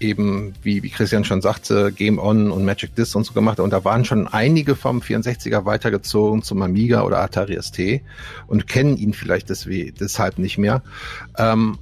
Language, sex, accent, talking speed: German, male, German, 185 wpm